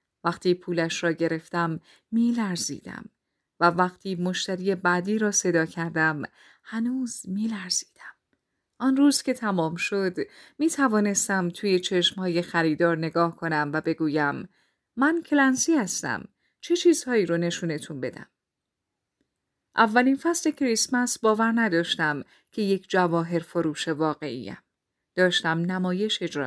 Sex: female